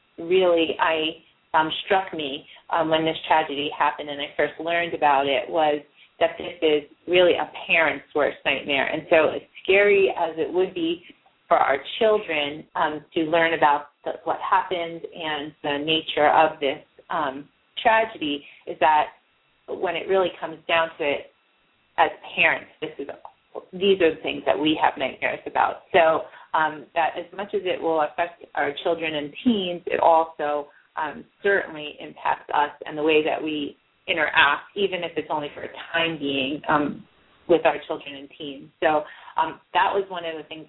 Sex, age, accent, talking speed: female, 30-49, American, 175 wpm